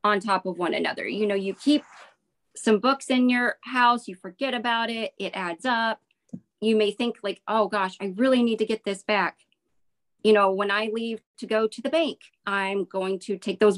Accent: American